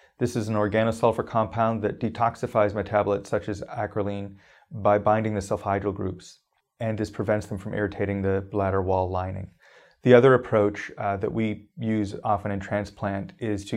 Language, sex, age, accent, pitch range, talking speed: English, male, 30-49, American, 100-115 Hz, 165 wpm